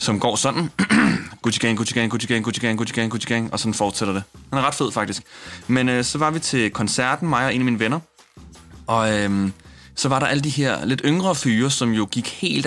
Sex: male